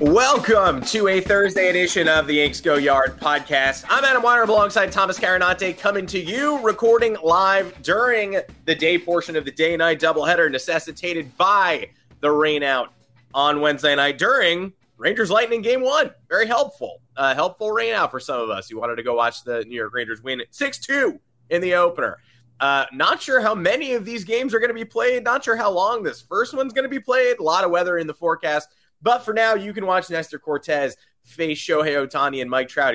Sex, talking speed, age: male, 200 wpm, 20-39